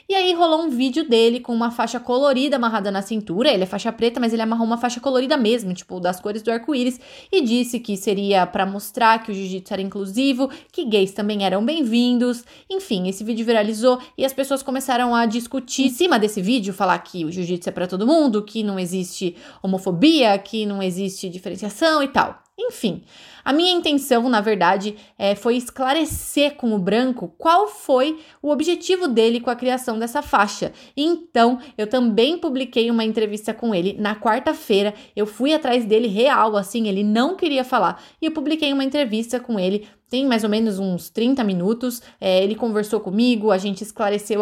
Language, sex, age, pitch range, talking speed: Portuguese, female, 20-39, 205-265 Hz, 185 wpm